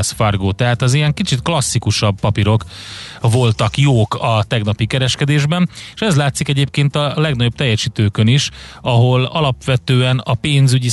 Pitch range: 105-125 Hz